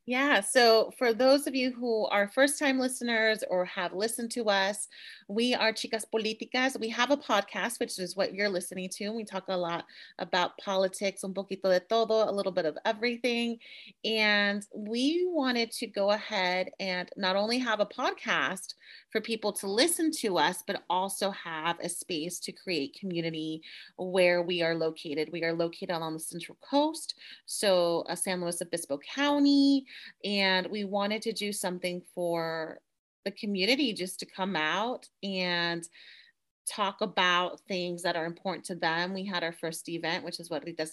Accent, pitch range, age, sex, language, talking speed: American, 180-240 Hz, 30-49, female, English, 175 wpm